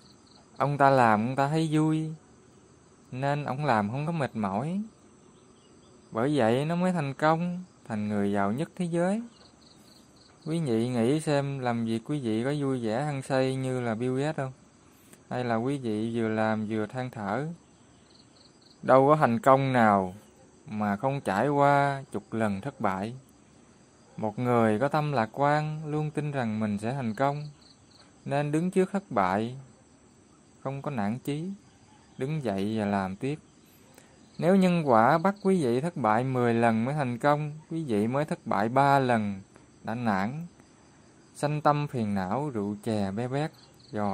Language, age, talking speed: Vietnamese, 20-39, 165 wpm